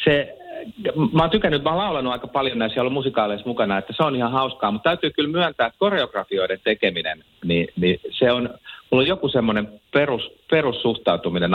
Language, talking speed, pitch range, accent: Finnish, 170 wpm, 100-155 Hz, native